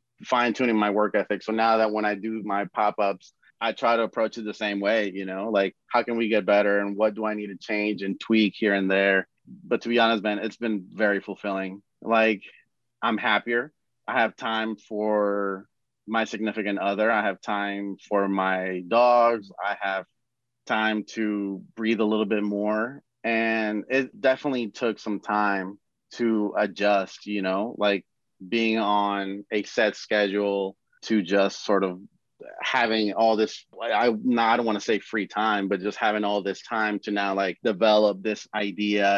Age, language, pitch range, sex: 30-49, English, 100-110 Hz, male